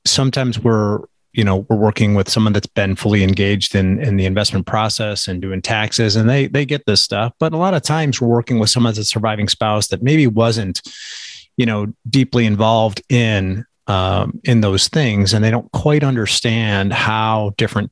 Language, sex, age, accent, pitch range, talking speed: English, male, 30-49, American, 95-115 Hz, 195 wpm